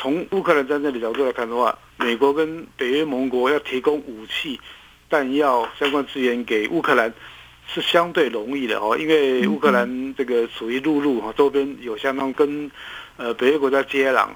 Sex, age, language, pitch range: male, 50-69, Chinese, 120-150 Hz